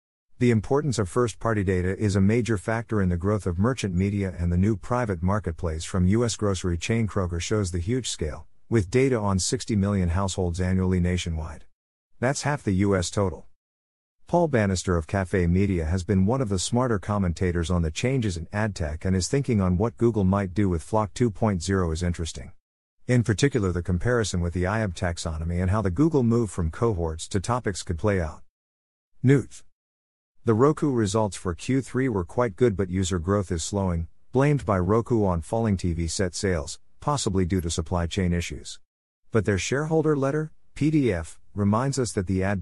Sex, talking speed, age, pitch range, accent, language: male, 185 wpm, 50-69, 90-115 Hz, American, English